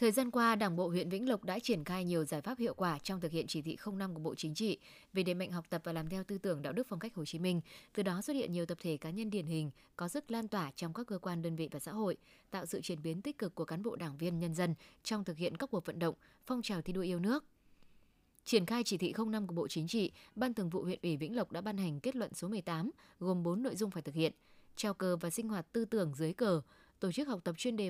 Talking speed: 295 wpm